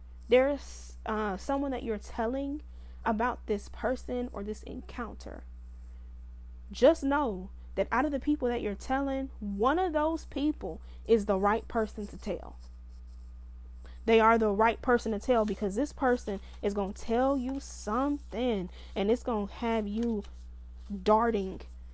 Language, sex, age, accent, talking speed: English, female, 20-39, American, 150 wpm